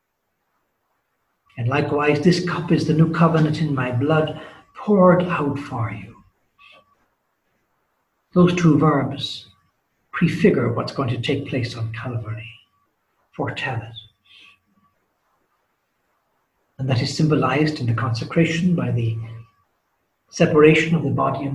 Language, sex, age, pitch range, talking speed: English, male, 60-79, 115-150 Hz, 115 wpm